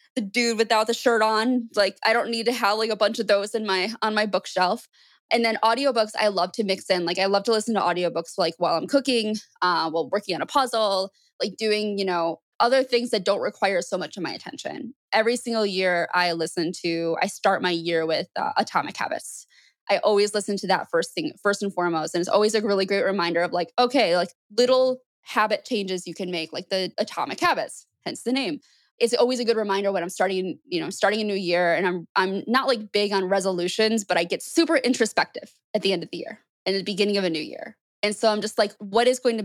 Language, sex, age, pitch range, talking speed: English, female, 20-39, 180-230 Hz, 240 wpm